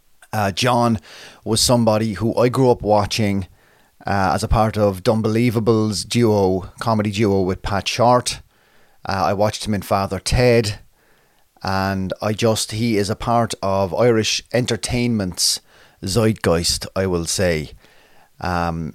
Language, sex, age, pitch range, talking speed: English, male, 30-49, 95-110 Hz, 135 wpm